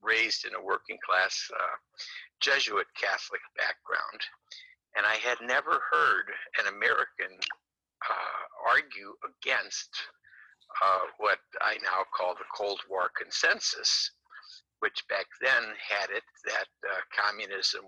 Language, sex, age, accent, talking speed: English, male, 60-79, American, 120 wpm